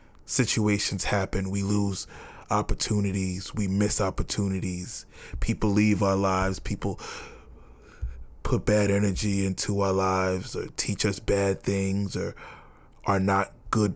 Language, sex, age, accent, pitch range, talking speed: English, male, 20-39, American, 95-115 Hz, 120 wpm